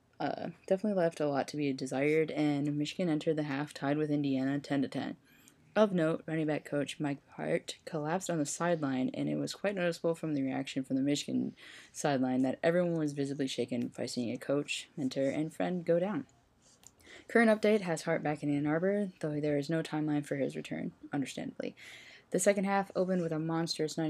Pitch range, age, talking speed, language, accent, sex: 145-170 Hz, 10-29, 195 wpm, English, American, female